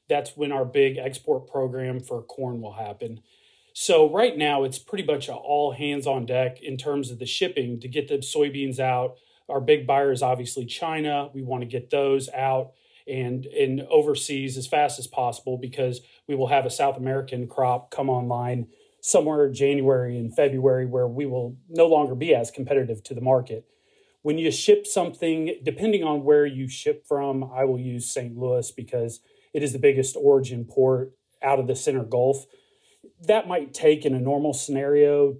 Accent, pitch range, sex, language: American, 130-145 Hz, male, English